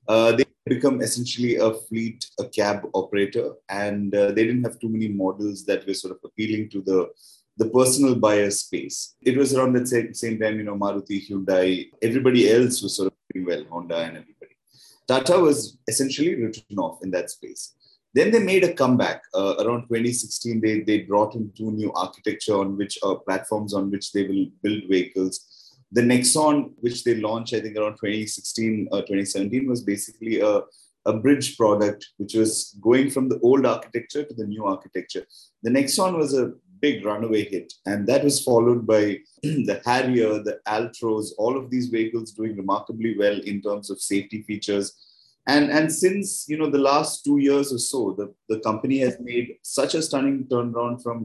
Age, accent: 30-49, Indian